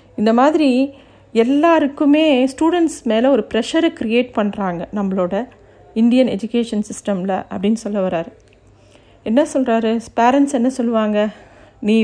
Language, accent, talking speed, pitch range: Tamil, native, 110 wpm, 225-275 Hz